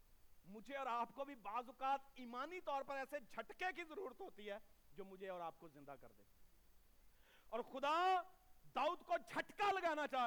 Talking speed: 175 wpm